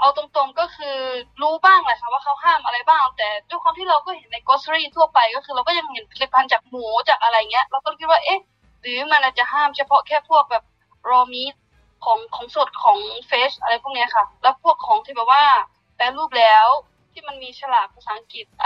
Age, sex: 20-39, female